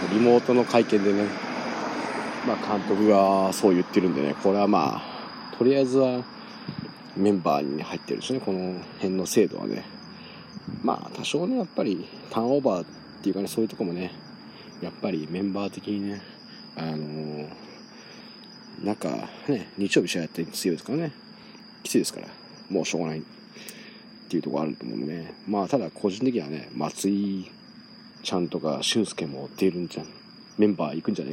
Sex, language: male, Japanese